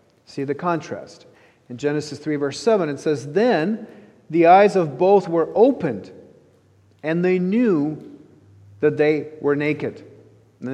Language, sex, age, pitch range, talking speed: English, male, 40-59, 145-205 Hz, 140 wpm